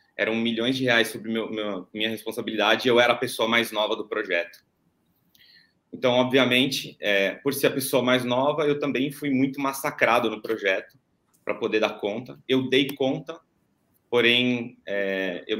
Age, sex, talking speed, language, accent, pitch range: 30-49, male, 170 wpm, Portuguese, Brazilian, 105-130 Hz